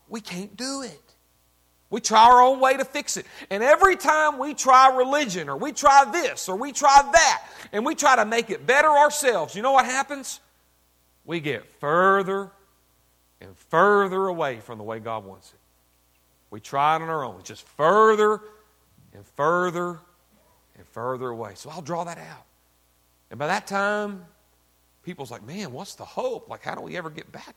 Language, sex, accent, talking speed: English, male, American, 185 wpm